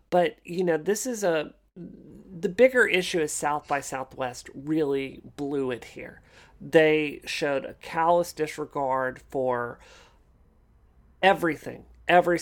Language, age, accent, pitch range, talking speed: English, 40-59, American, 140-165 Hz, 120 wpm